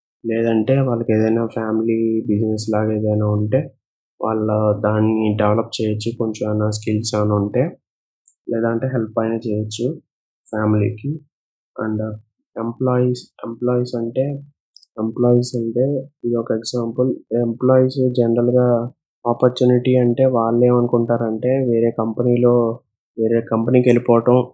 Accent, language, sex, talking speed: native, Telugu, male, 105 wpm